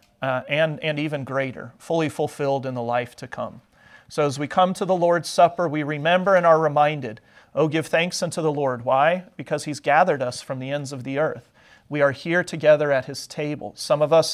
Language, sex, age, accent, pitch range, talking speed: English, male, 40-59, American, 140-180 Hz, 220 wpm